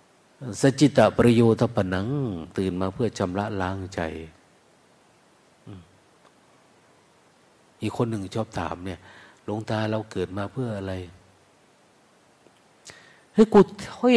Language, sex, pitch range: Thai, male, 95-130 Hz